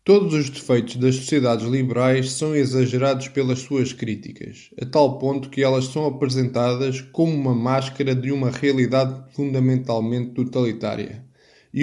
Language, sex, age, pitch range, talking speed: Portuguese, male, 20-39, 120-140 Hz, 135 wpm